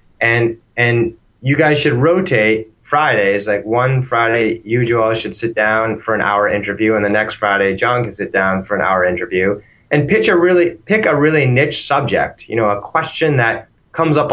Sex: male